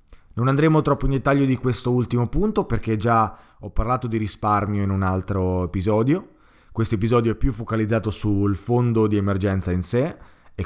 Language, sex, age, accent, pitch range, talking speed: Italian, male, 20-39, native, 95-120 Hz, 175 wpm